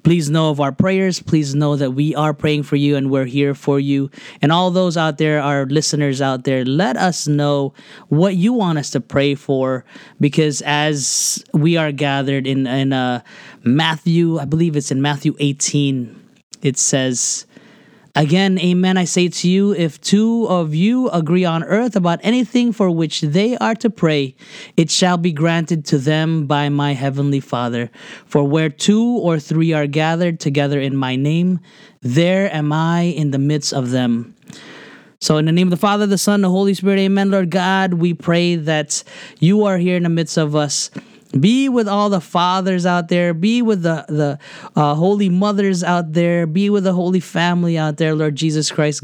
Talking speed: 190 wpm